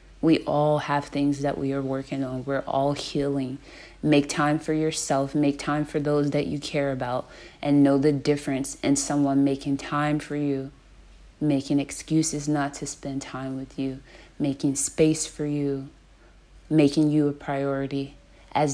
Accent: American